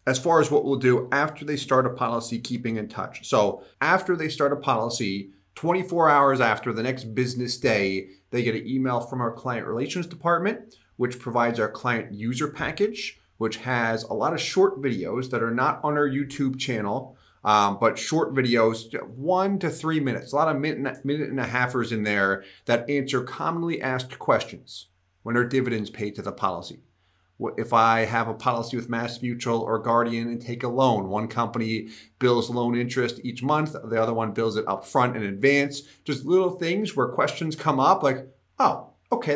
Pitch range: 115-150 Hz